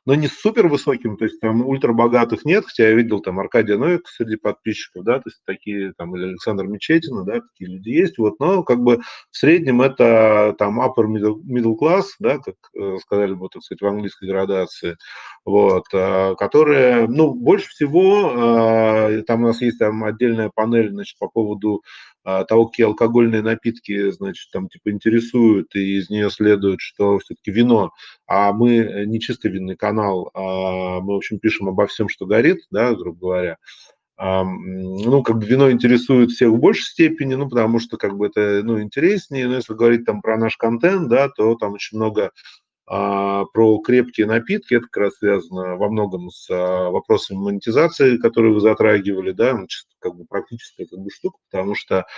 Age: 30-49